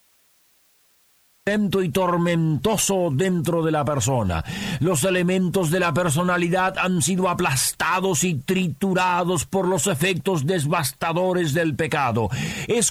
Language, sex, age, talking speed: Spanish, male, 50-69, 105 wpm